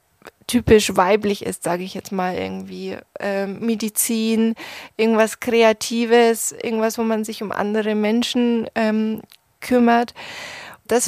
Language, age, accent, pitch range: German, 20-39, German, 215-235 Hz